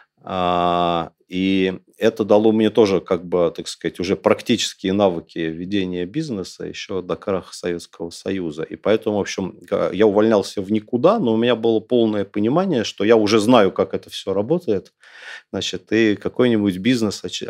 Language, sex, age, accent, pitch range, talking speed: Russian, male, 40-59, native, 95-115 Hz, 155 wpm